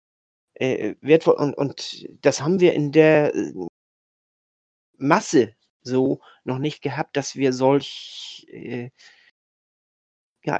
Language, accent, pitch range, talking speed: German, German, 130-165 Hz, 100 wpm